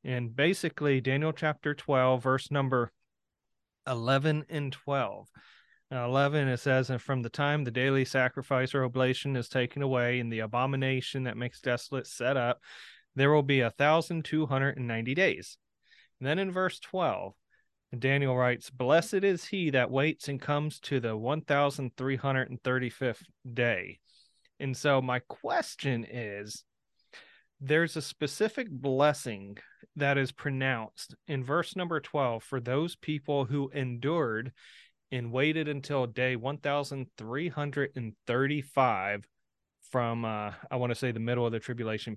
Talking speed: 150 wpm